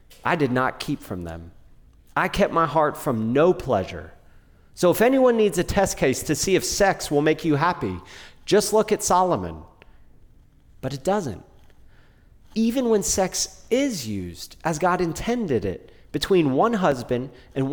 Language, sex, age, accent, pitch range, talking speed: English, male, 30-49, American, 105-175 Hz, 160 wpm